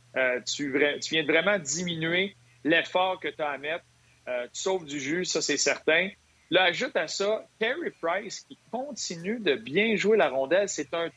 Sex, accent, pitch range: male, Canadian, 130-185 Hz